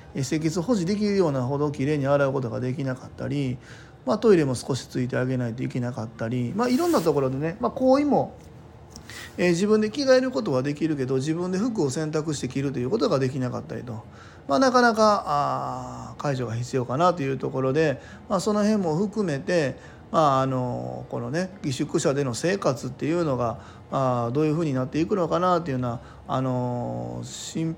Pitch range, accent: 130-160 Hz, native